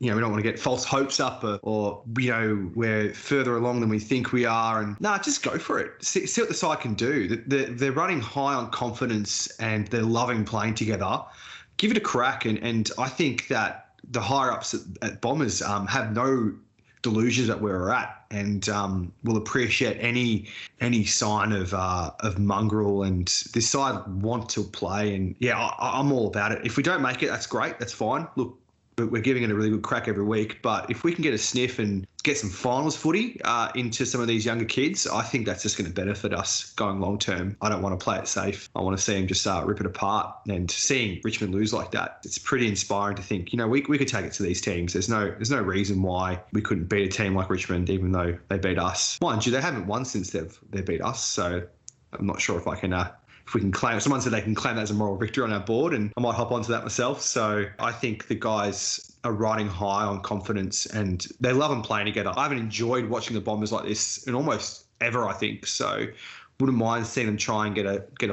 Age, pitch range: 20-39, 100-120 Hz